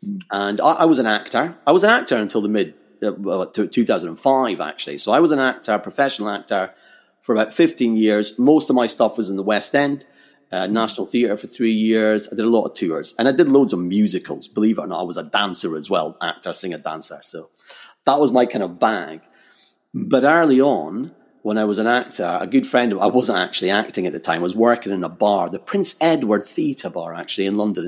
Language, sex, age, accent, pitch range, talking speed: English, male, 30-49, British, 105-135 Hz, 230 wpm